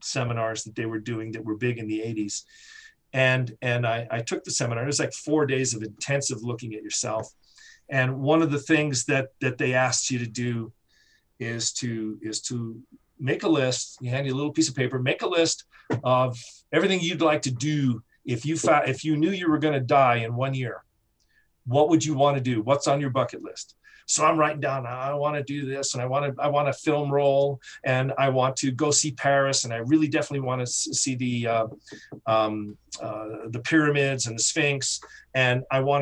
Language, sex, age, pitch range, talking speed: English, male, 40-59, 120-150 Hz, 220 wpm